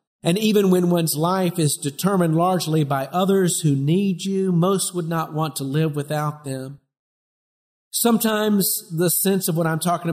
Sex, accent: male, American